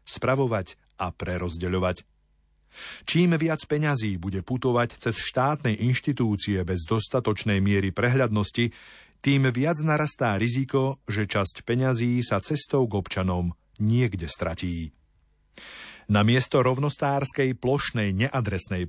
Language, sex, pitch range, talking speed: Slovak, male, 100-135 Hz, 105 wpm